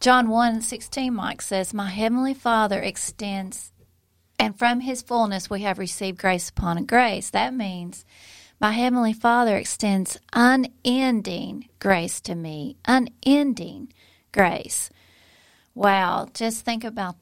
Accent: American